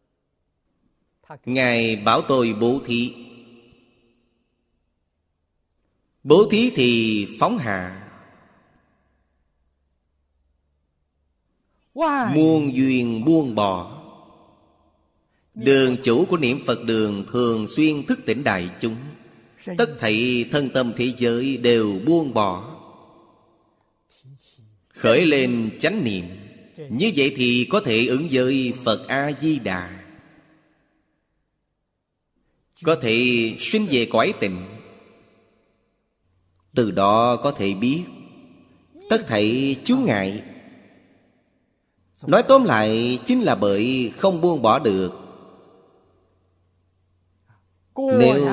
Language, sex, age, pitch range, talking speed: Vietnamese, male, 30-49, 90-130 Hz, 95 wpm